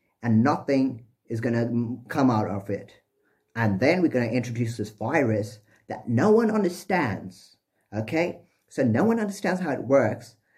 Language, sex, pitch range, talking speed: English, male, 110-140 Hz, 155 wpm